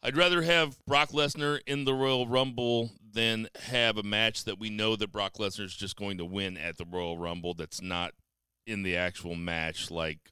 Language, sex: English, male